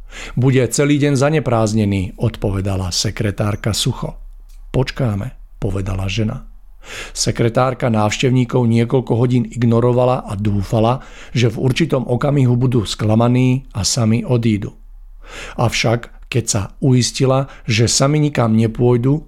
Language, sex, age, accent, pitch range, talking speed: Czech, male, 50-69, native, 110-130 Hz, 105 wpm